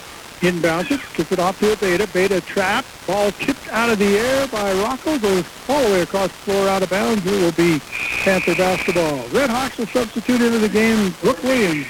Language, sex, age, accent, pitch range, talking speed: English, male, 60-79, American, 170-215 Hz, 205 wpm